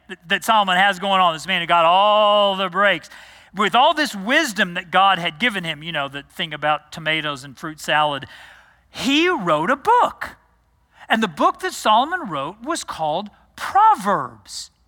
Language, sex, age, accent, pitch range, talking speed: English, male, 40-59, American, 205-285 Hz, 175 wpm